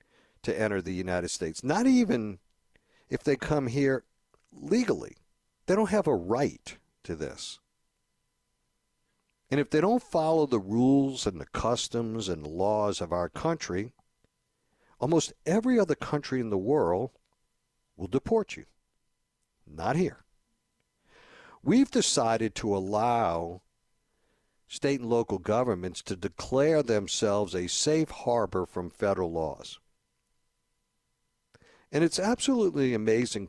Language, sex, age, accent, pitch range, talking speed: English, male, 60-79, American, 95-140 Hz, 120 wpm